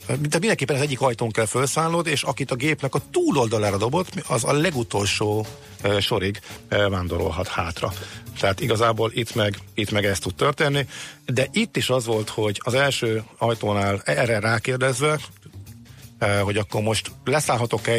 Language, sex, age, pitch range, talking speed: Hungarian, male, 50-69, 100-120 Hz, 145 wpm